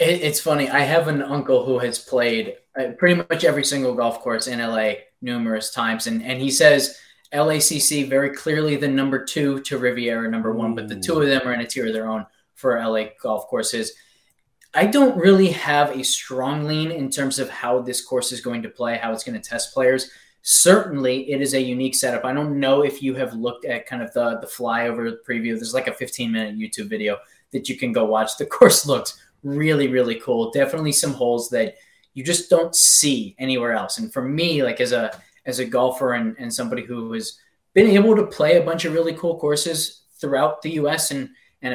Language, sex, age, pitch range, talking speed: English, male, 20-39, 120-155 Hz, 215 wpm